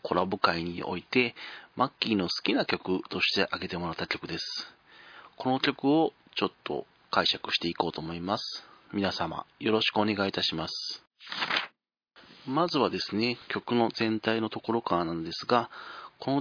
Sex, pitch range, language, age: male, 110-145 Hz, Japanese, 40-59